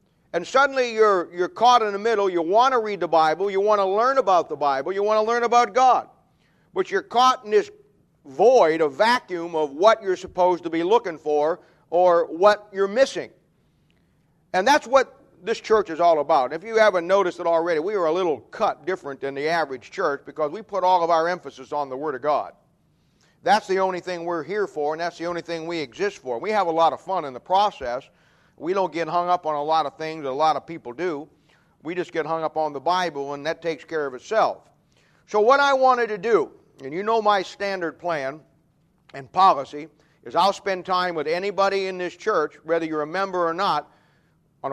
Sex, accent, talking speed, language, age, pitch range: male, American, 225 wpm, English, 50-69, 160-205 Hz